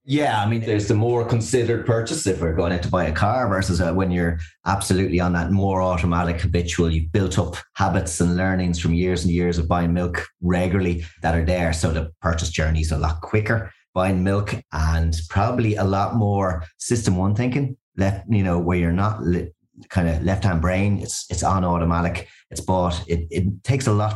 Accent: Irish